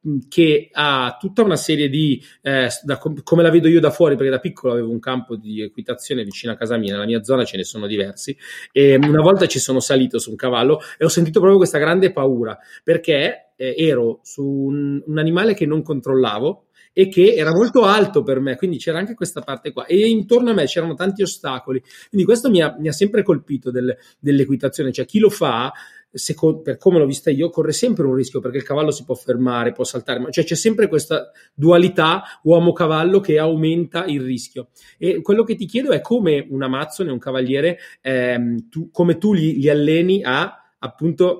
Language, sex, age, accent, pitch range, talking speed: Italian, male, 30-49, native, 130-170 Hz, 205 wpm